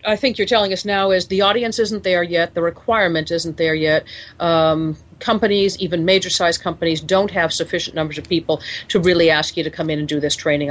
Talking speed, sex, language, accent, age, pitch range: 225 wpm, female, English, American, 40-59, 160-205 Hz